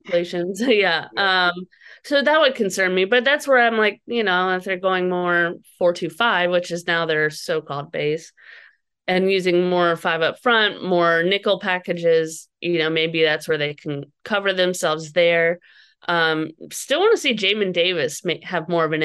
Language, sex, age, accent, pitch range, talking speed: English, female, 30-49, American, 160-195 Hz, 180 wpm